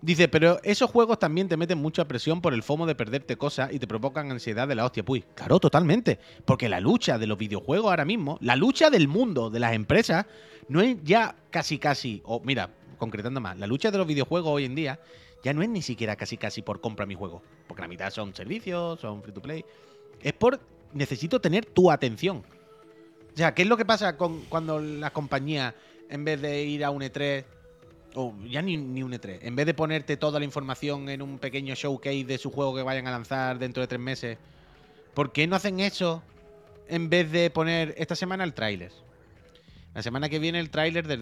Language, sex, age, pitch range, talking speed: Spanish, male, 30-49, 115-165 Hz, 220 wpm